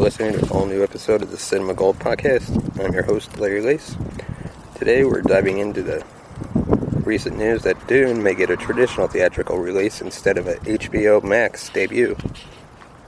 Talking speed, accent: 165 wpm, American